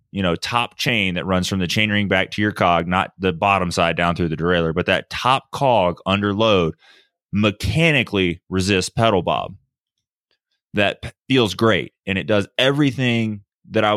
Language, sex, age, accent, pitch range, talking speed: English, male, 20-39, American, 95-115 Hz, 175 wpm